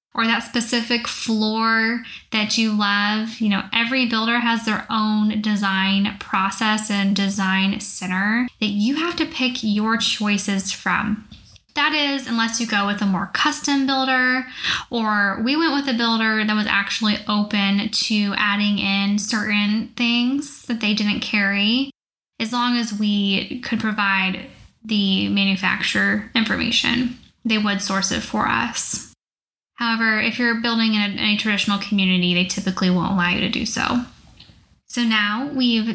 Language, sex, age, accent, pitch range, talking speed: English, female, 10-29, American, 205-240 Hz, 150 wpm